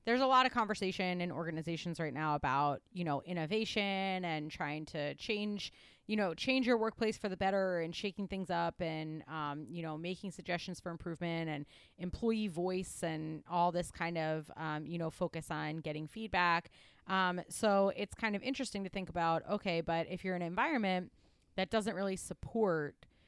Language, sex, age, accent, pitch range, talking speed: English, female, 30-49, American, 165-205 Hz, 185 wpm